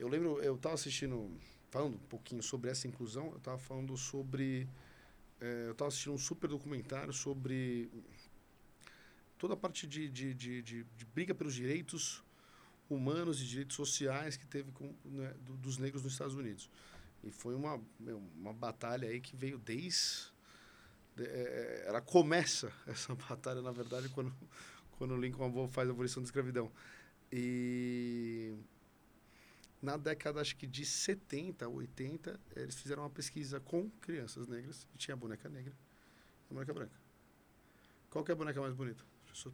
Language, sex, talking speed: Portuguese, male, 165 wpm